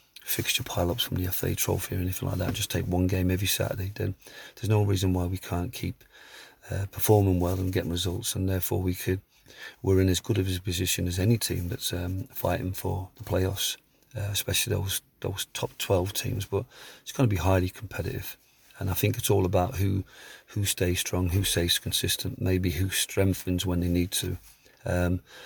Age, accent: 40-59, British